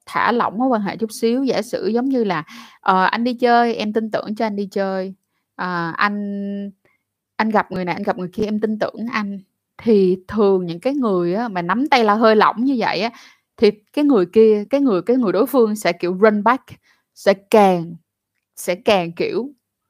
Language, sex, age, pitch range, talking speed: Vietnamese, female, 20-39, 190-255 Hz, 215 wpm